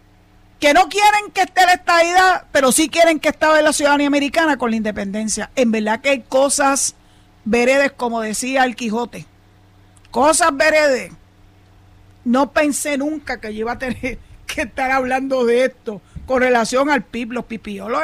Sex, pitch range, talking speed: female, 230-290 Hz, 165 wpm